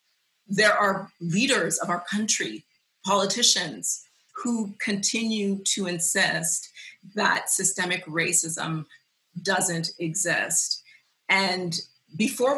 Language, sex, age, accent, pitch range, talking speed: English, female, 30-49, American, 175-210 Hz, 85 wpm